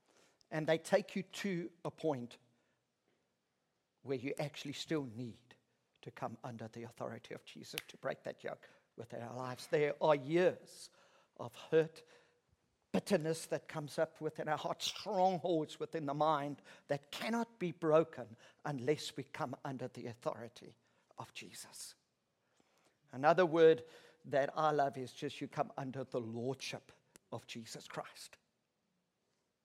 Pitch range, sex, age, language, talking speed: 130-165 Hz, male, 50-69, English, 140 wpm